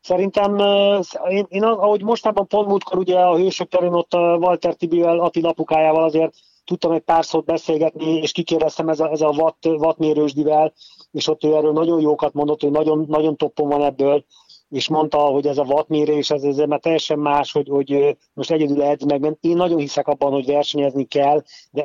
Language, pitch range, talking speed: Hungarian, 135-155 Hz, 180 wpm